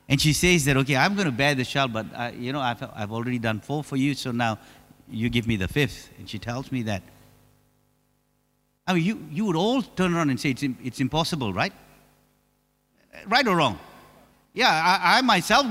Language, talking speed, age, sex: English, 210 wpm, 50-69, male